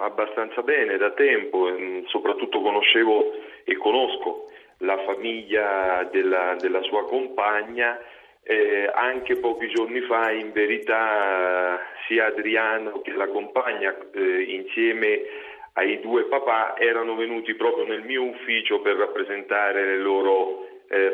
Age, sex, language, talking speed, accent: 40-59, male, Italian, 120 wpm, native